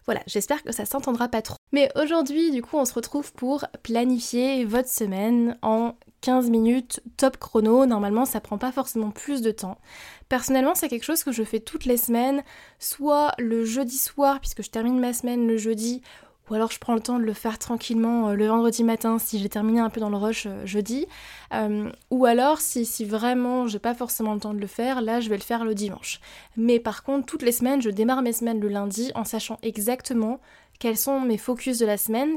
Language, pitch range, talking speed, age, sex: French, 225-265 Hz, 215 wpm, 20-39, female